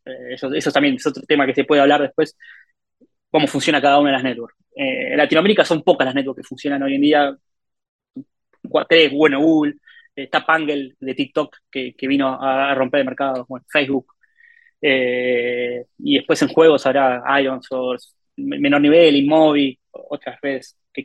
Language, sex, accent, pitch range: English, male, Argentinian, 135-170 Hz